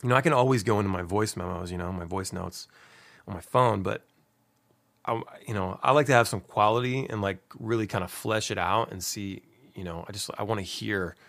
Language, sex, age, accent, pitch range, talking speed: English, male, 30-49, American, 105-120 Hz, 245 wpm